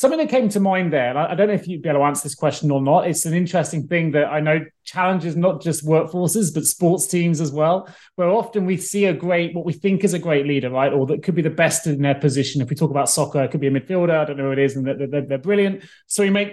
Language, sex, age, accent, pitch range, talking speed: English, male, 30-49, British, 150-195 Hz, 305 wpm